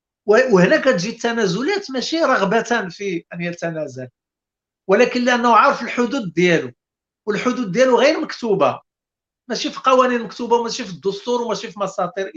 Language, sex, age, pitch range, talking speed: Arabic, male, 50-69, 185-255 Hz, 130 wpm